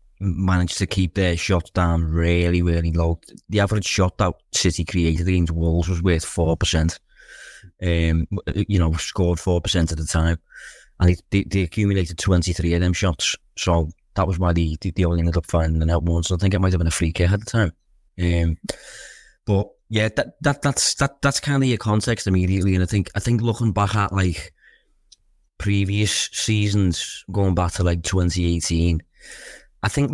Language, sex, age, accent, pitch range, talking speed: English, male, 20-39, British, 85-100 Hz, 190 wpm